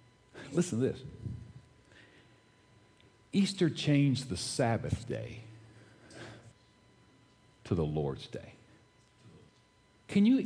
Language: English